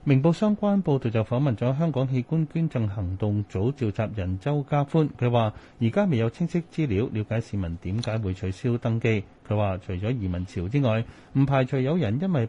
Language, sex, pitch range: Chinese, male, 105-135 Hz